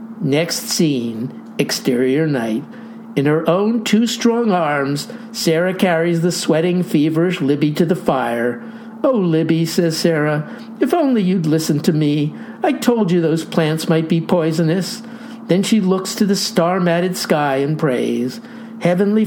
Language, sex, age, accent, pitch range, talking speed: English, male, 50-69, American, 155-225 Hz, 150 wpm